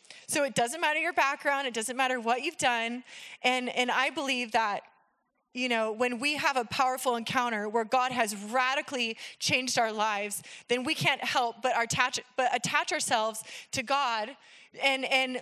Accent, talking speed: American, 175 wpm